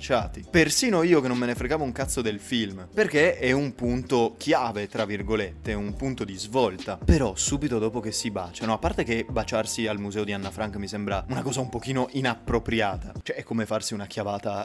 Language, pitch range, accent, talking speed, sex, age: Italian, 110-145 Hz, native, 205 wpm, male, 20-39